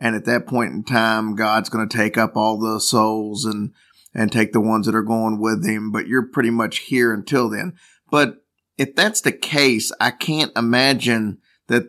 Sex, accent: male, American